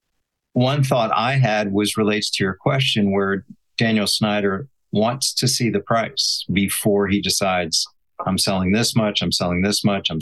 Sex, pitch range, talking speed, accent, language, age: male, 105-135 Hz, 170 wpm, American, English, 40-59